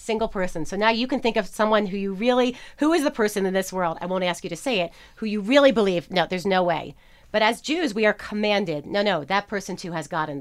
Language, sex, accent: English, female, American